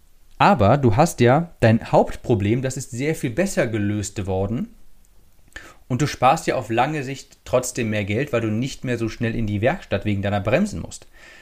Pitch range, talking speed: 110-140 Hz, 190 wpm